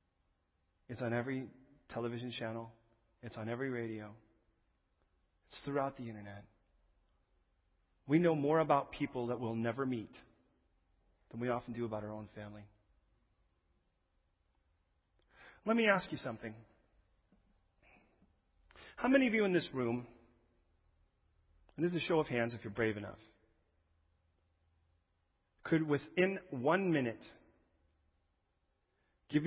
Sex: male